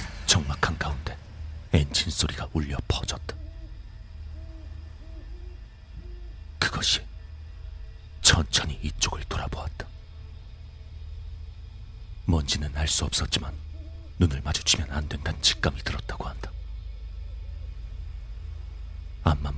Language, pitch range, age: Korean, 75-85 Hz, 40-59